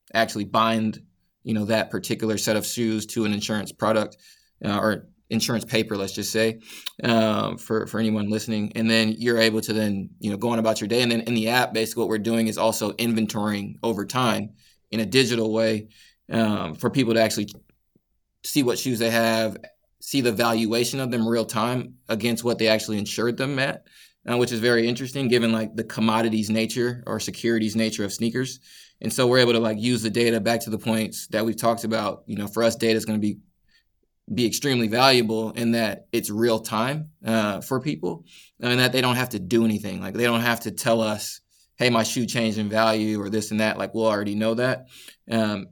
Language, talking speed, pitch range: English, 215 wpm, 110-120 Hz